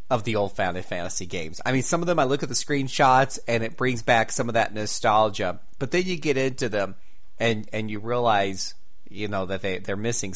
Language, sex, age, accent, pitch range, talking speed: English, male, 30-49, American, 100-125 Hz, 230 wpm